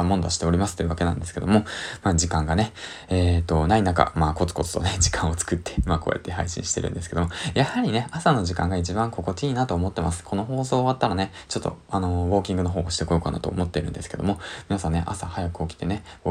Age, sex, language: 20-39, male, Japanese